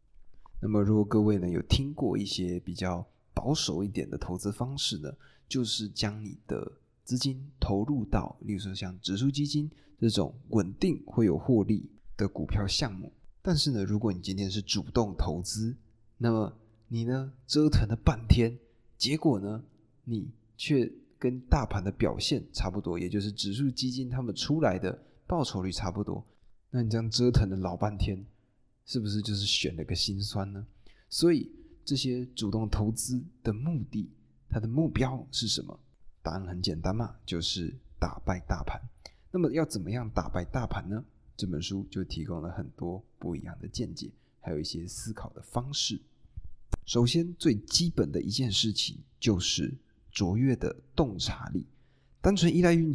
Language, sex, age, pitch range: Chinese, male, 20-39, 95-125 Hz